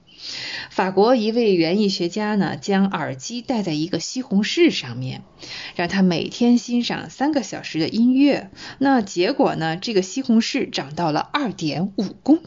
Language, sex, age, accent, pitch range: Chinese, female, 20-39, native, 170-225 Hz